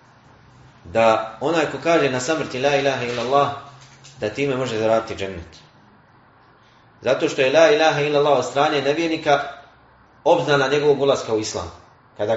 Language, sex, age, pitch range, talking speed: English, male, 30-49, 130-175 Hz, 140 wpm